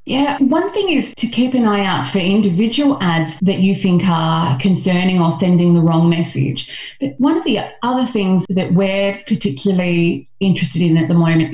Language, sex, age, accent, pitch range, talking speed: English, female, 30-49, Australian, 160-200 Hz, 185 wpm